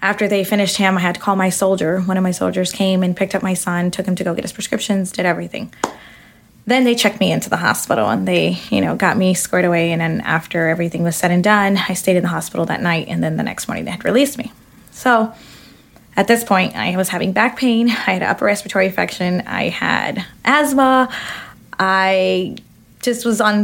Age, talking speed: 20-39, 225 wpm